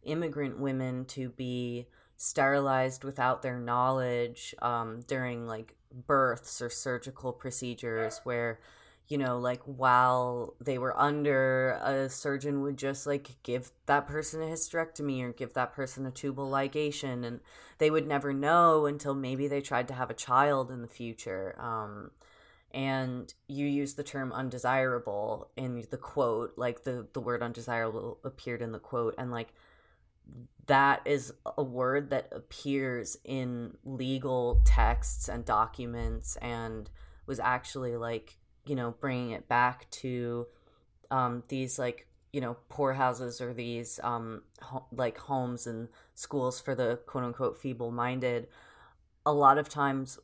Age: 20-39